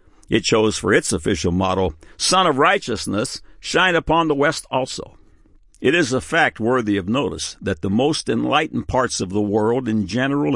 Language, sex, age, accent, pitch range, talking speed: English, male, 60-79, American, 105-145 Hz, 175 wpm